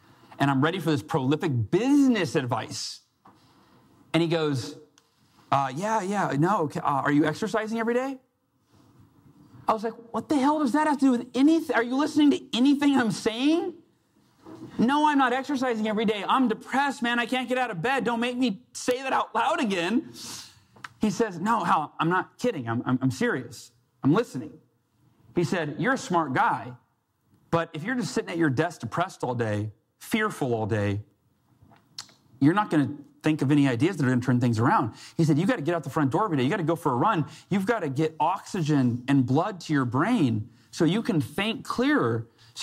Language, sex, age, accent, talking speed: English, male, 30-49, American, 205 wpm